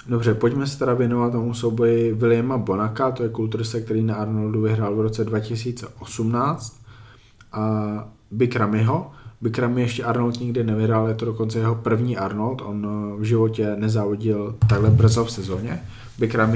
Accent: native